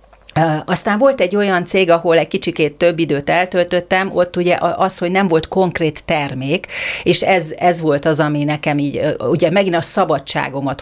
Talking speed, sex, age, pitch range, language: 170 wpm, female, 40-59, 145-180 Hz, Hungarian